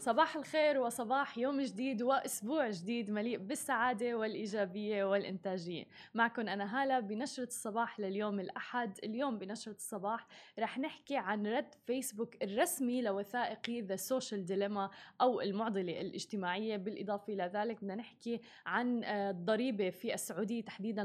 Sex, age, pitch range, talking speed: female, 20-39, 205-245 Hz, 125 wpm